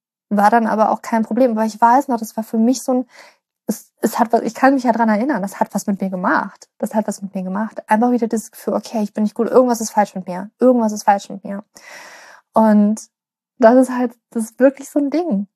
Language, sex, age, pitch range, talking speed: German, female, 20-39, 210-240 Hz, 260 wpm